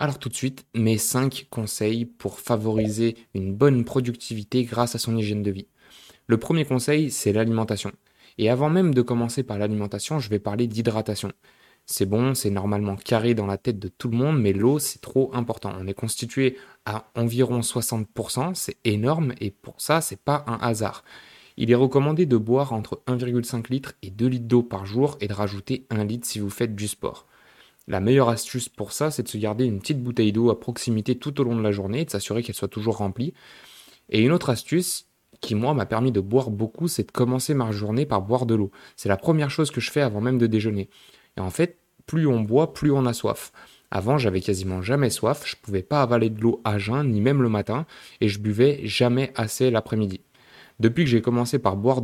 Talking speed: 220 wpm